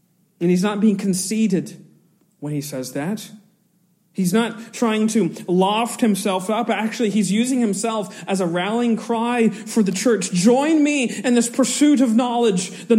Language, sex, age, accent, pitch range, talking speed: English, male, 40-59, American, 175-225 Hz, 160 wpm